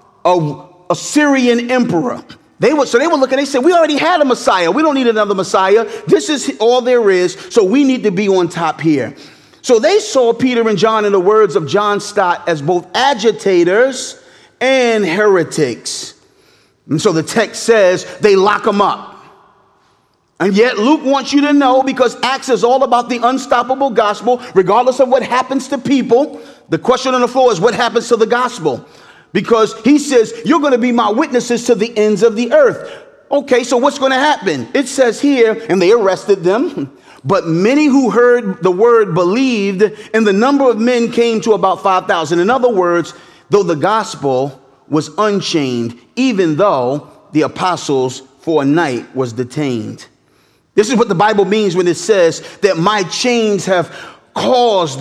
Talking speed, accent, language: 185 wpm, American, English